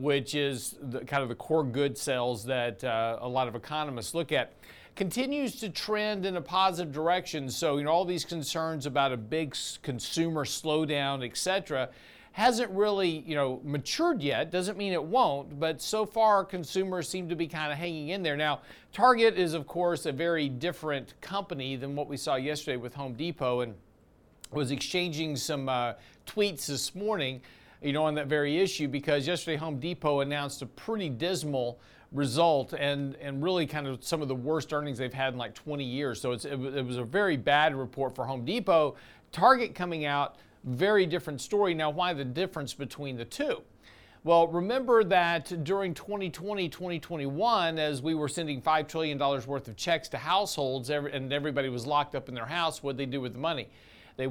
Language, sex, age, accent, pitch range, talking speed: English, male, 50-69, American, 135-170 Hz, 190 wpm